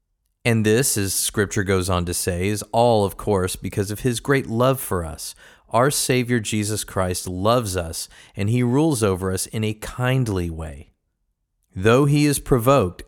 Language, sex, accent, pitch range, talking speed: English, male, American, 90-120 Hz, 175 wpm